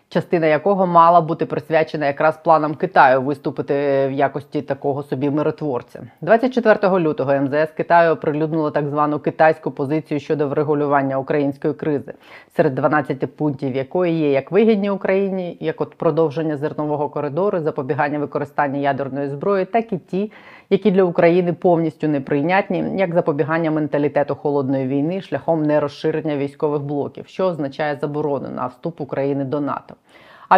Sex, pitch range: female, 150-185 Hz